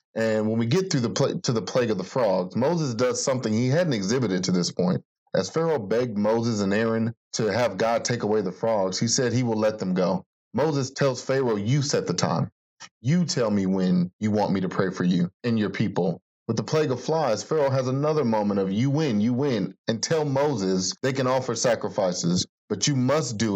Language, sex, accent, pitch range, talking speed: English, male, American, 100-135 Hz, 225 wpm